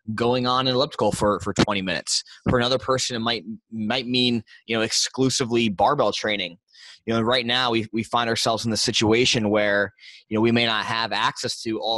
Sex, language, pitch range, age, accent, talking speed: male, English, 105-120 Hz, 20-39, American, 205 wpm